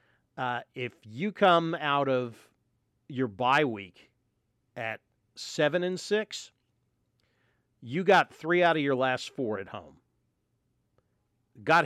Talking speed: 120 wpm